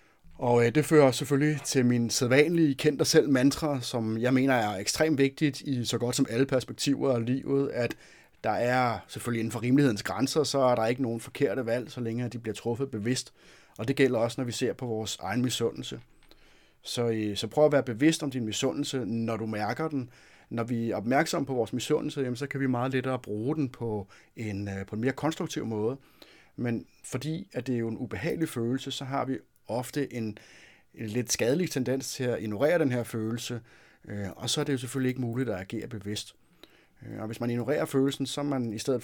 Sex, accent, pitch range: male, native, 110-135 Hz